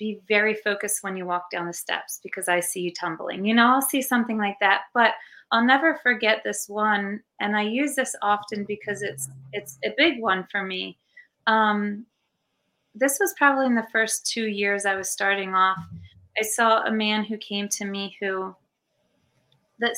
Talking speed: 190 wpm